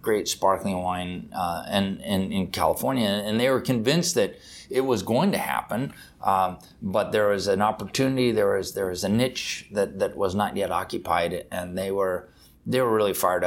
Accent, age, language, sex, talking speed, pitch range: American, 30-49, English, male, 195 wpm, 95-110 Hz